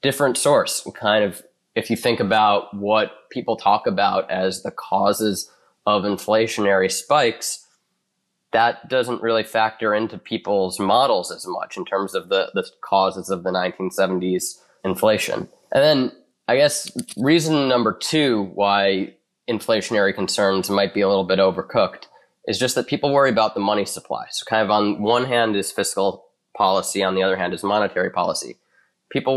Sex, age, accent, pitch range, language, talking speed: male, 20-39, American, 95-115 Hz, English, 160 wpm